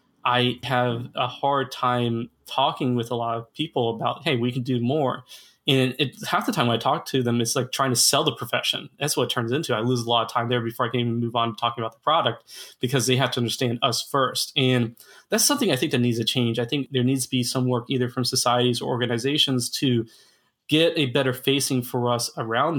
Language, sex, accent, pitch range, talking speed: English, male, American, 120-135 Hz, 250 wpm